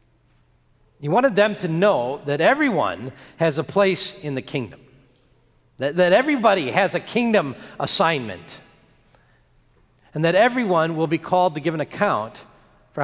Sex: male